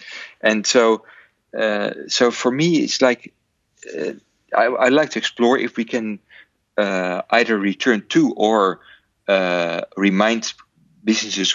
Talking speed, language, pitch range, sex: 130 wpm, English, 95-115 Hz, male